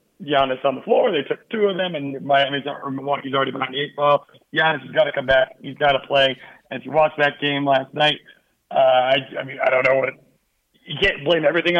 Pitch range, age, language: 135-160 Hz, 40-59, English